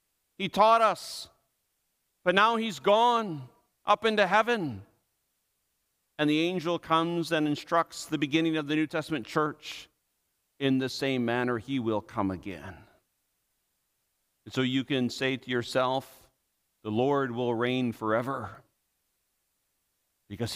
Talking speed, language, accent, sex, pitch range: 130 wpm, English, American, male, 120-165 Hz